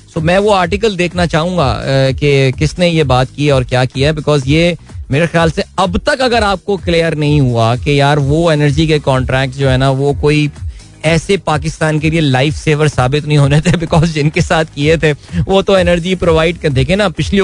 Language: Hindi